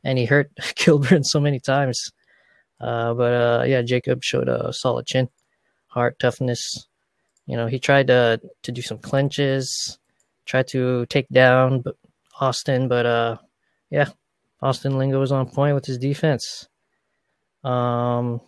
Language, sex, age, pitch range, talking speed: English, male, 20-39, 120-140 Hz, 145 wpm